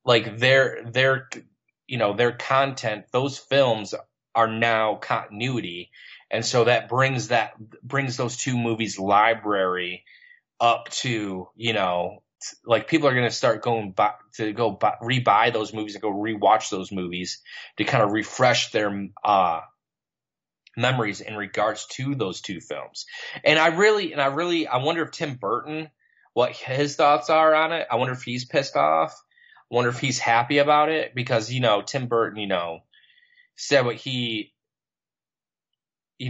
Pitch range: 110-145 Hz